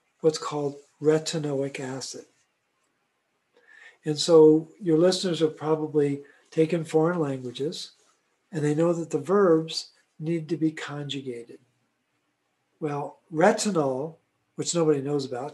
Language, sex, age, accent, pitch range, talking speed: English, male, 50-69, American, 145-170 Hz, 110 wpm